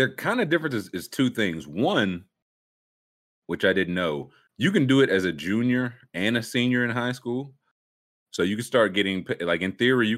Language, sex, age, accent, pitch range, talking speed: English, male, 30-49, American, 80-110 Hz, 200 wpm